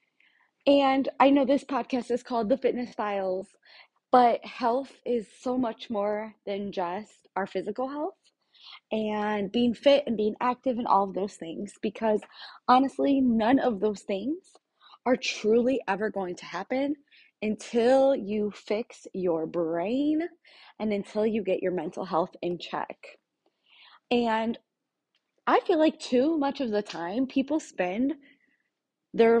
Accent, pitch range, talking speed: American, 200-265 Hz, 145 wpm